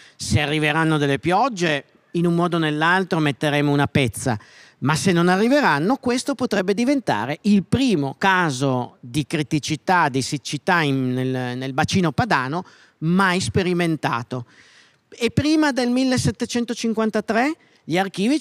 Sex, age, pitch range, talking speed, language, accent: male, 40-59, 145-215 Hz, 125 wpm, Italian, native